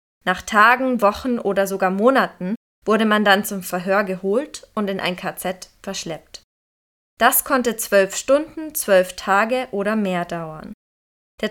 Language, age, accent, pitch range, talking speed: German, 20-39, German, 195-245 Hz, 140 wpm